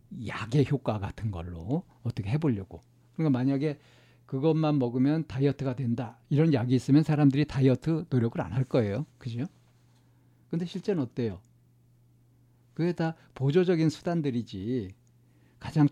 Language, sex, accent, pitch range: Korean, male, native, 120-155 Hz